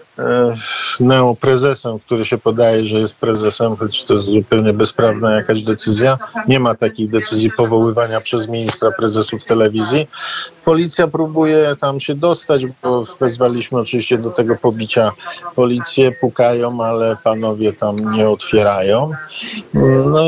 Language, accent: Polish, native